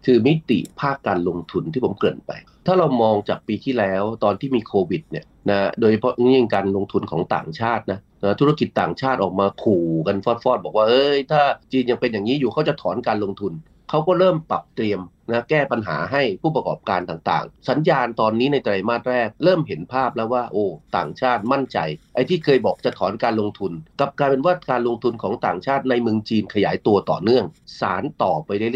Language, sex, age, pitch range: Thai, male, 30-49, 100-140 Hz